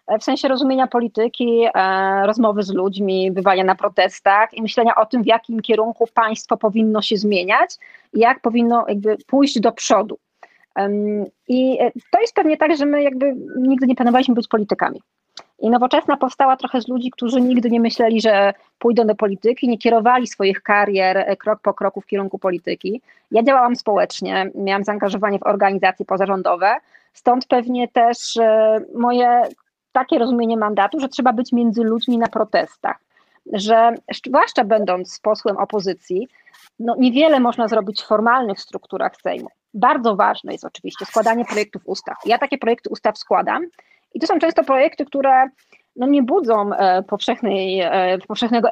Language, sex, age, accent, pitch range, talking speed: Polish, female, 30-49, native, 205-255 Hz, 150 wpm